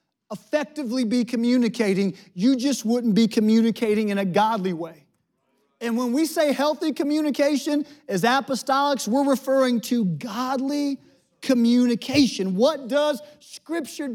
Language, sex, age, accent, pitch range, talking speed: English, male, 40-59, American, 215-265 Hz, 120 wpm